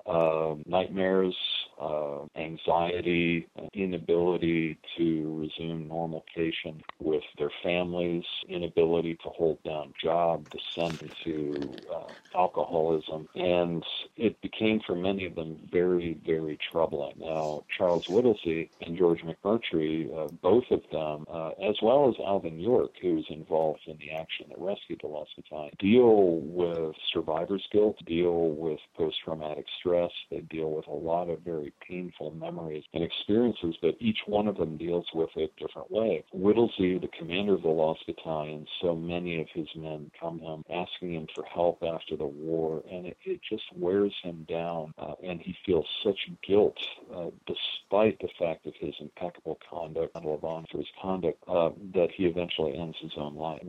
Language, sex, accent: English, male, American